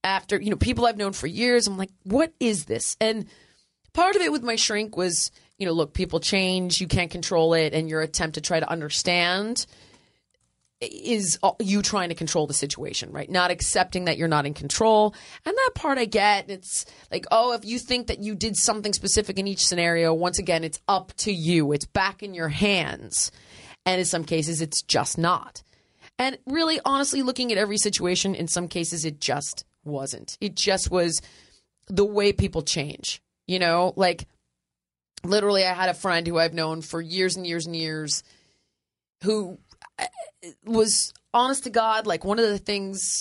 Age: 30-49